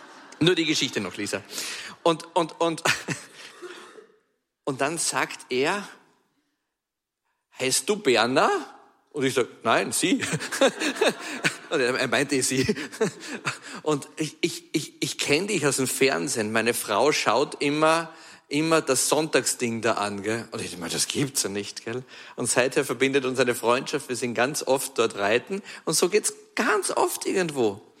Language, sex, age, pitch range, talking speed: German, male, 50-69, 130-190 Hz, 150 wpm